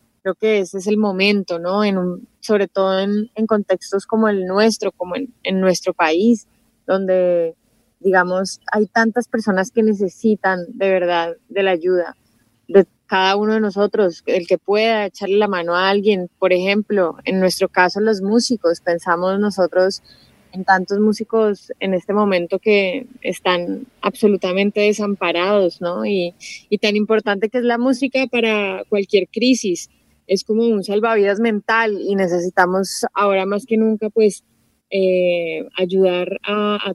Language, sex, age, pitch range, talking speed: Spanish, female, 20-39, 185-210 Hz, 155 wpm